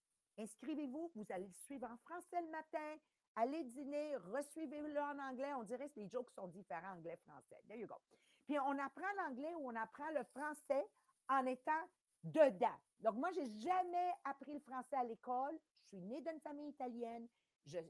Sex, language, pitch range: female, English, 210-290 Hz